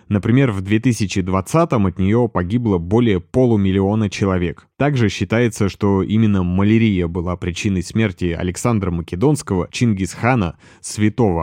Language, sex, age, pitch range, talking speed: Russian, male, 30-49, 90-110 Hz, 110 wpm